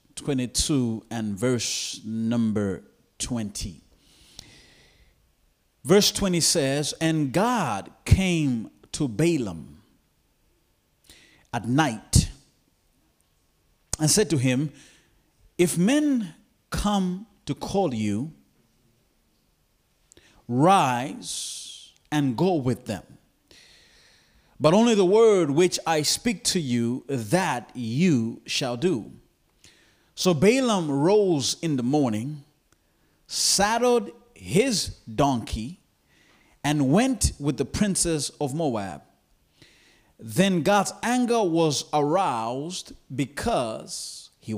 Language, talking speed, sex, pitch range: English, 90 wpm, male, 115-180 Hz